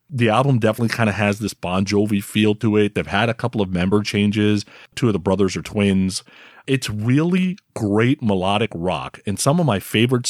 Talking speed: 205 wpm